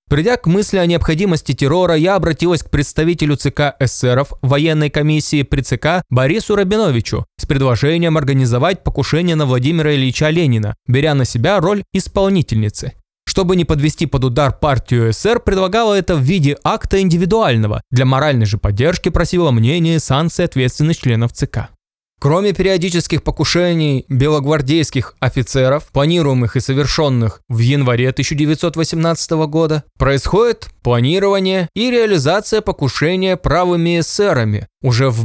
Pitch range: 125-170 Hz